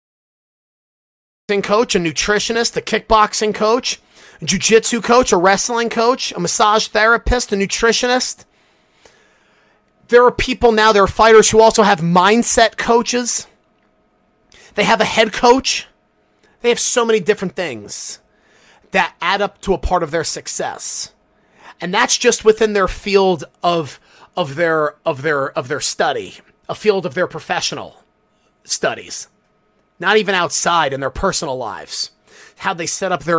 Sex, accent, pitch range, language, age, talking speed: male, American, 165-220 Hz, English, 30-49, 145 wpm